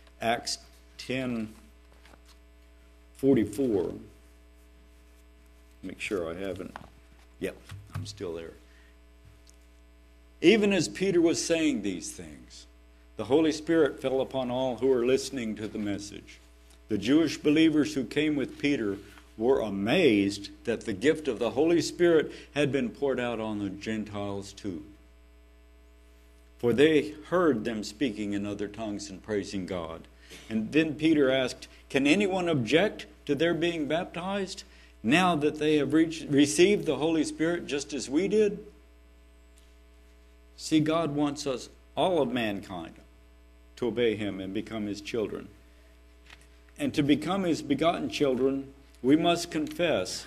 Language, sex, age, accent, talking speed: English, male, 60-79, American, 135 wpm